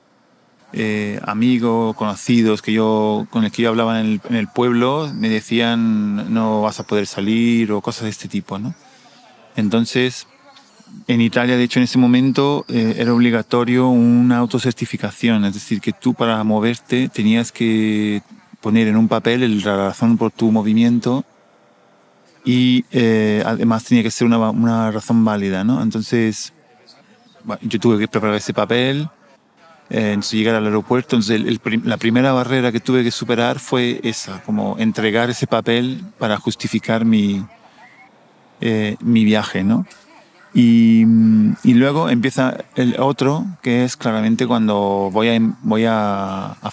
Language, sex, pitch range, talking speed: Spanish, male, 110-125 Hz, 155 wpm